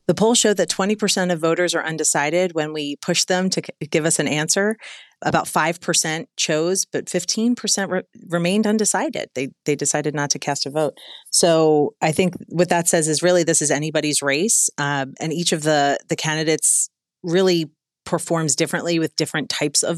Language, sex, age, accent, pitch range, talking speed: English, female, 30-49, American, 145-180 Hz, 185 wpm